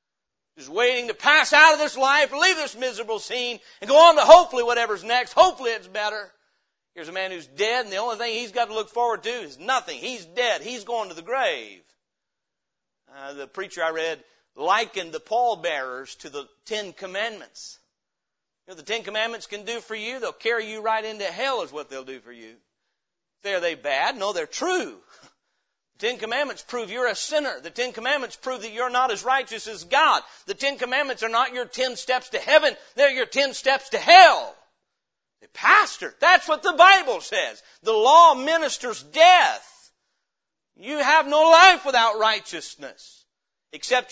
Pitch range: 210-295 Hz